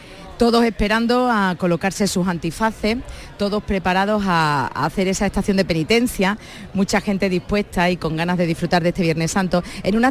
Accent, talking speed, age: Spanish, 170 wpm, 40-59